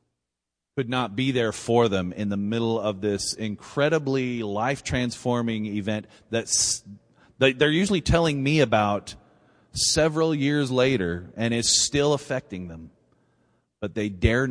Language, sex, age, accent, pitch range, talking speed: English, male, 30-49, American, 105-130 Hz, 135 wpm